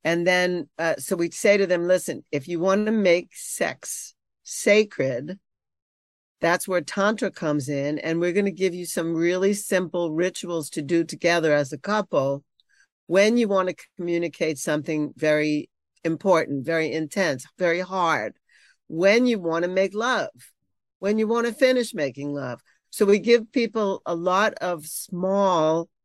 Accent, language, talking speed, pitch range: American, English, 160 wpm, 170-215 Hz